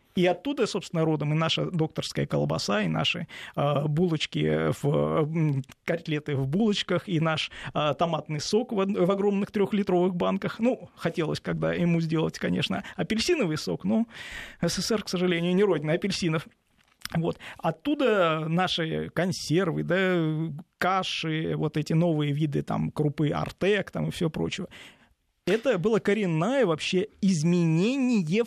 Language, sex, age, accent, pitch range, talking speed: Russian, male, 20-39, native, 155-195 Hz, 115 wpm